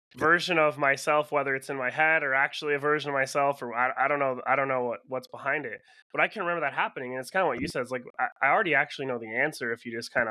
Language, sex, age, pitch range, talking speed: English, male, 20-39, 125-155 Hz, 305 wpm